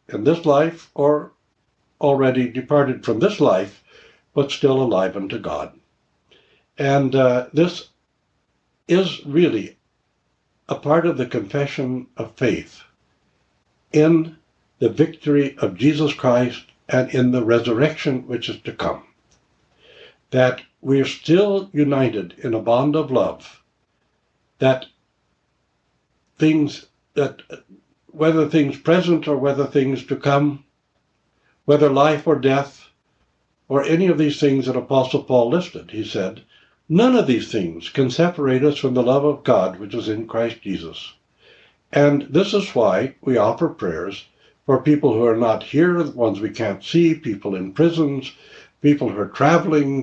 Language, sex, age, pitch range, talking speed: English, male, 60-79, 125-155 Hz, 140 wpm